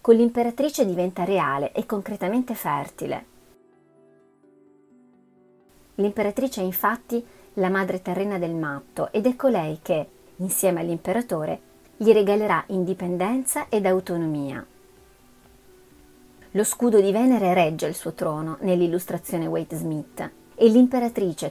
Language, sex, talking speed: Italian, female, 110 wpm